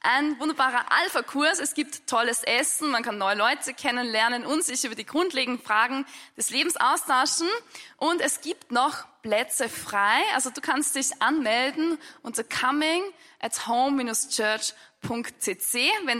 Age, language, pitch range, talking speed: 10-29, German, 230-295 Hz, 130 wpm